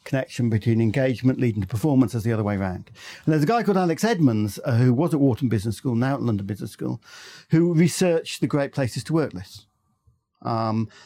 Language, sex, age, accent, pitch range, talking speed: English, male, 50-69, British, 120-150 Hz, 210 wpm